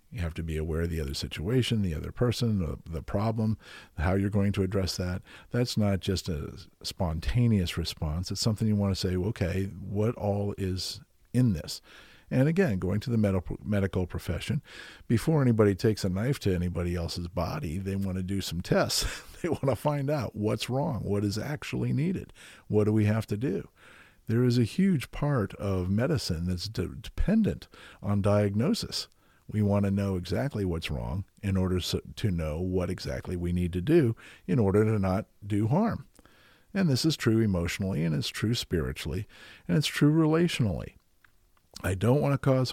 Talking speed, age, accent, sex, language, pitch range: 185 wpm, 50-69, American, male, English, 90-115 Hz